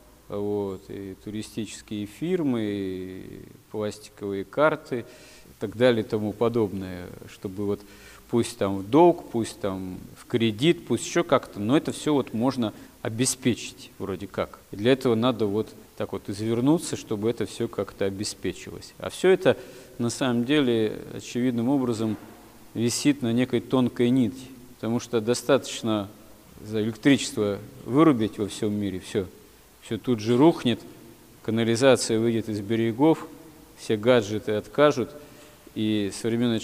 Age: 40-59